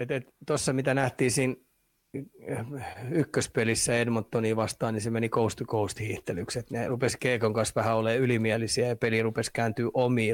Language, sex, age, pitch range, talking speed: Finnish, male, 30-49, 115-130 Hz, 155 wpm